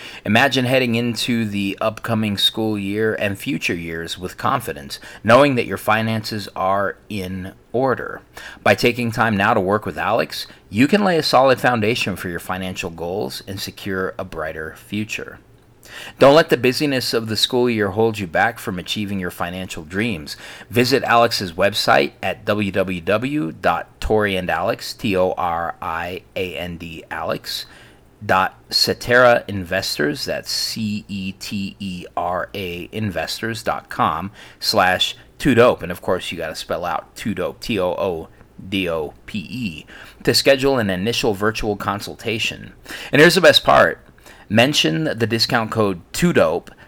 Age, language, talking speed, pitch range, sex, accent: 30-49, English, 125 wpm, 95-115 Hz, male, American